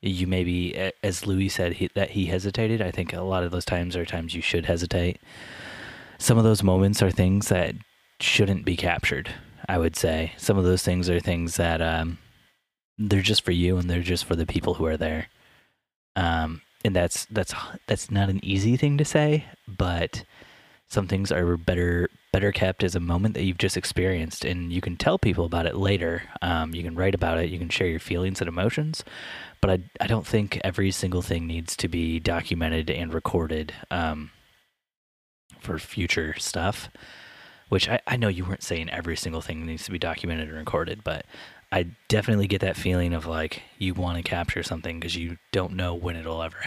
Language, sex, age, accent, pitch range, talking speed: English, male, 20-39, American, 85-95 Hz, 200 wpm